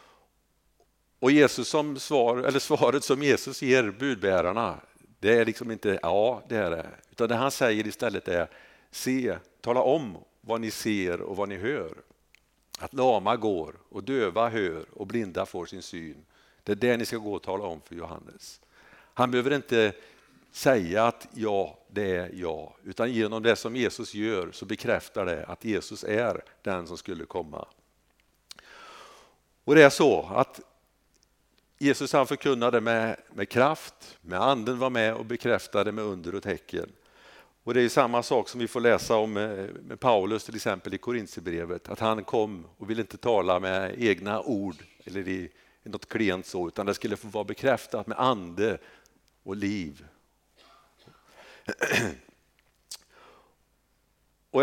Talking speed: 160 wpm